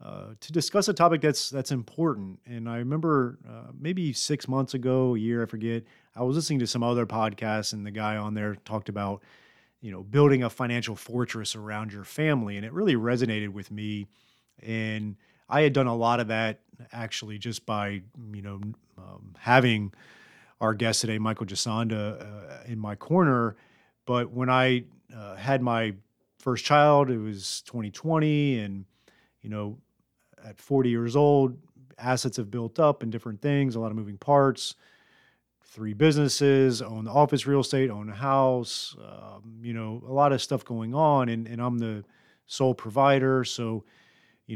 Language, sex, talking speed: English, male, 175 wpm